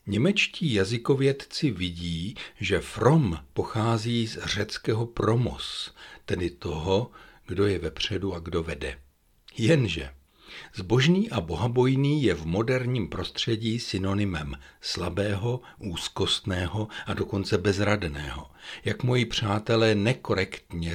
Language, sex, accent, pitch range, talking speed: Czech, male, native, 90-120 Hz, 100 wpm